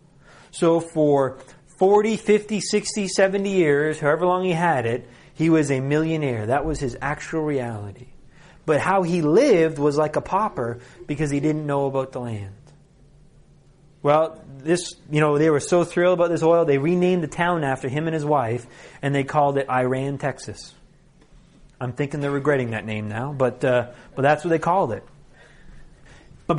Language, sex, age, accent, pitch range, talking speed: English, male, 30-49, American, 130-170 Hz, 175 wpm